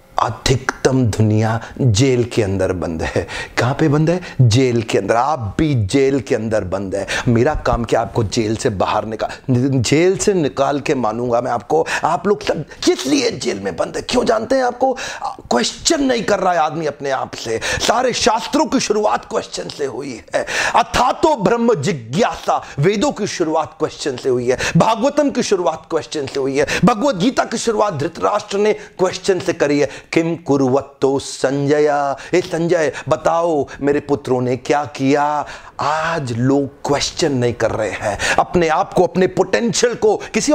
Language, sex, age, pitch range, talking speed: Hindi, male, 40-59, 130-200 Hz, 165 wpm